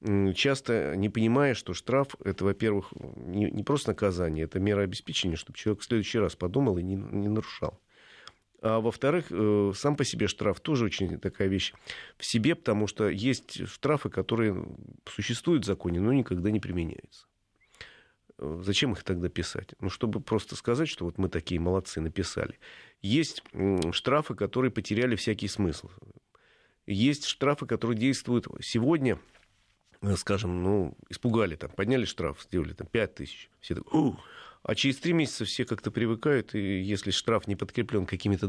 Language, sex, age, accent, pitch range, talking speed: Russian, male, 40-59, native, 95-120 Hz, 150 wpm